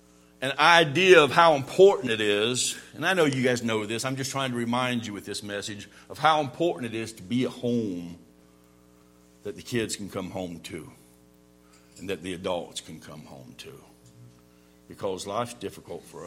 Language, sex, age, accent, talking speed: English, male, 60-79, American, 190 wpm